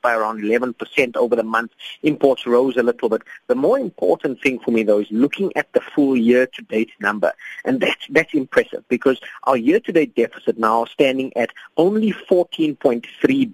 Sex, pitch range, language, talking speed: male, 115-190 Hz, English, 175 wpm